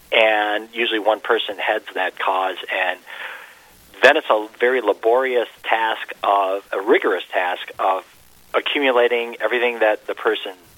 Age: 40-59